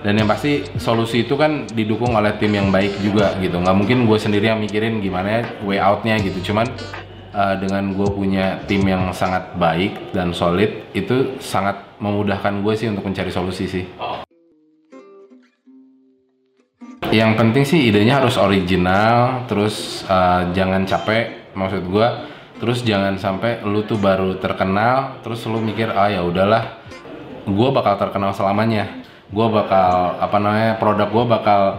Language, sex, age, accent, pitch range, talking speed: Indonesian, male, 20-39, native, 95-115 Hz, 150 wpm